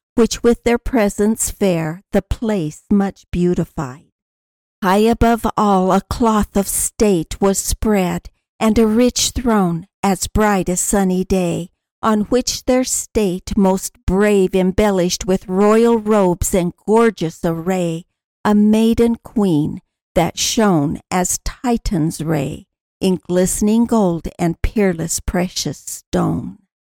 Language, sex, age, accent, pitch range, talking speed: English, female, 60-79, American, 180-220 Hz, 125 wpm